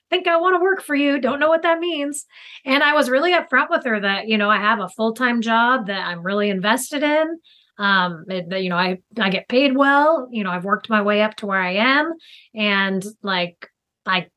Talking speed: 230 wpm